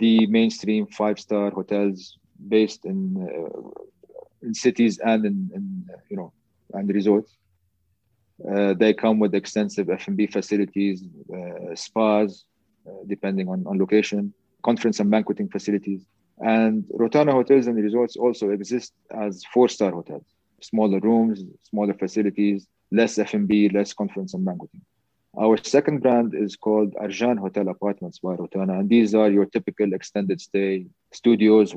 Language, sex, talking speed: English, male, 135 wpm